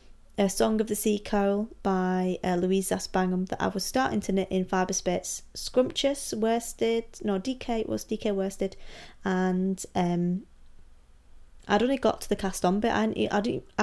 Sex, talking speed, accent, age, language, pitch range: female, 165 wpm, British, 20-39, English, 180-225 Hz